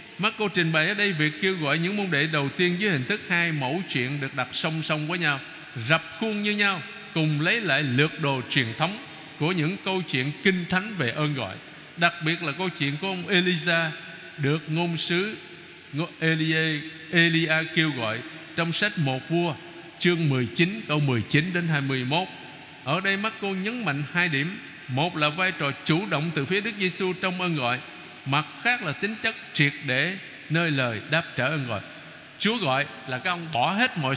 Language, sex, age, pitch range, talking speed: Vietnamese, male, 60-79, 145-185 Hz, 200 wpm